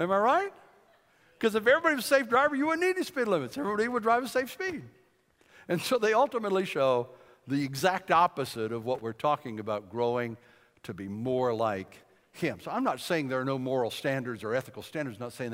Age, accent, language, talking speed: 60-79, American, English, 215 wpm